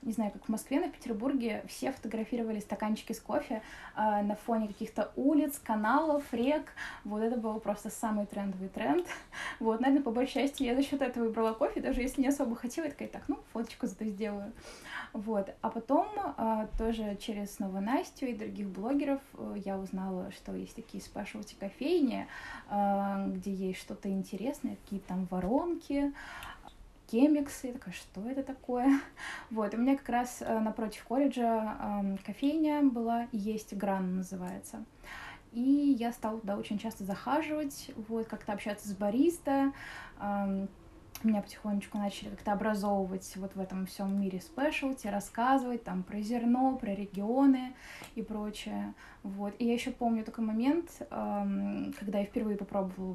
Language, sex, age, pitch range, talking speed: Russian, female, 20-39, 205-260 Hz, 160 wpm